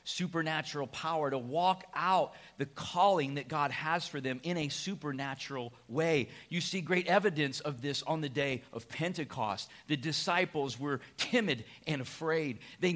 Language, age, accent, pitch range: English, 40-59, American, 140-175 Hz